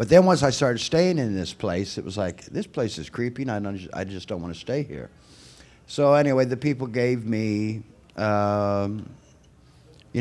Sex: male